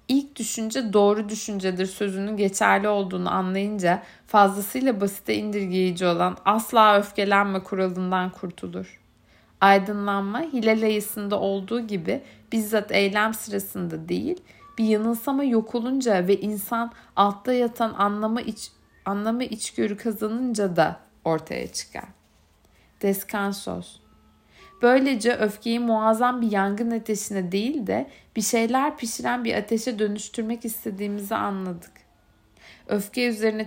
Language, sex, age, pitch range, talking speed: Turkish, female, 60-79, 190-225 Hz, 105 wpm